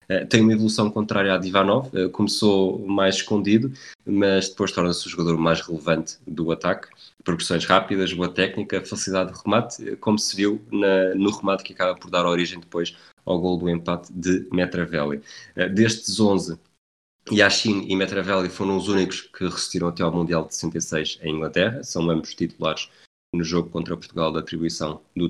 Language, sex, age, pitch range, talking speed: Portuguese, male, 20-39, 85-95 Hz, 165 wpm